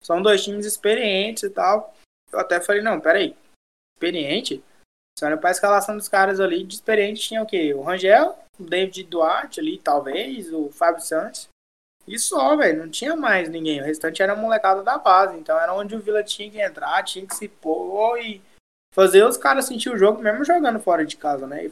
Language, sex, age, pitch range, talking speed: Portuguese, male, 20-39, 170-215 Hz, 200 wpm